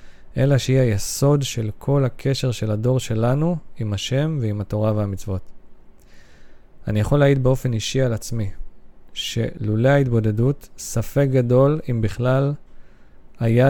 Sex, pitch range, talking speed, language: male, 105-130 Hz, 125 wpm, Hebrew